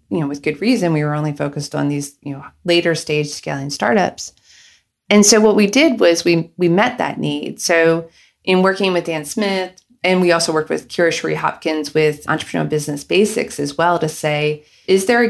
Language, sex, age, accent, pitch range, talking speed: English, female, 30-49, American, 150-185 Hz, 210 wpm